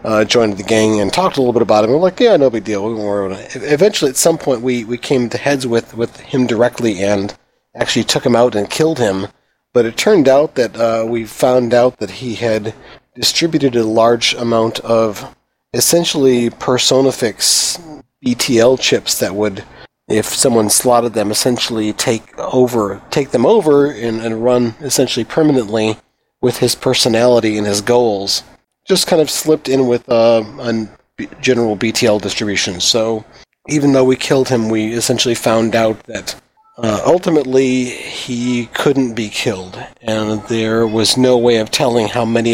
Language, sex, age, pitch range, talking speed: English, male, 40-59, 110-130 Hz, 170 wpm